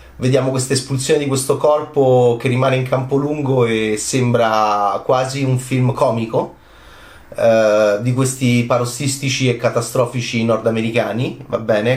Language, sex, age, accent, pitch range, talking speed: Italian, male, 30-49, native, 120-140 Hz, 130 wpm